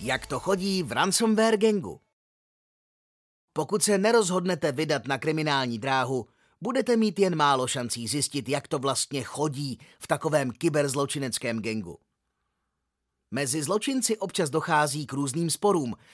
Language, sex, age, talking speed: Czech, male, 30-49, 125 wpm